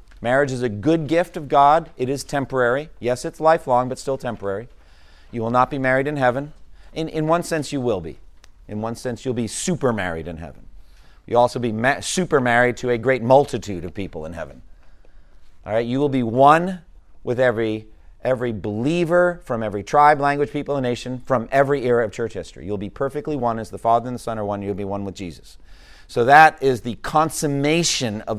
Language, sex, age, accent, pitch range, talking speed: English, male, 40-59, American, 100-140 Hz, 205 wpm